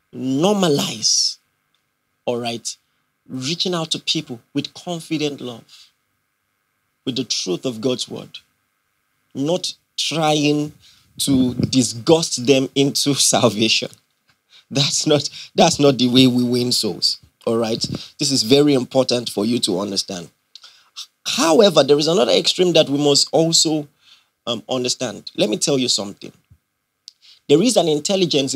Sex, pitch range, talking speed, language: male, 115-150 Hz, 130 wpm, English